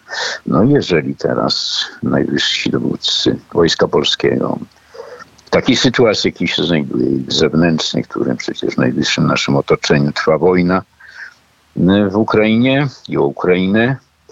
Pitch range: 75-100 Hz